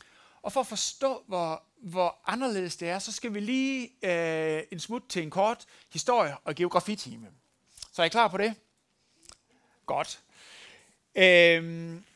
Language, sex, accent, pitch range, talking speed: Danish, male, native, 155-215 Hz, 150 wpm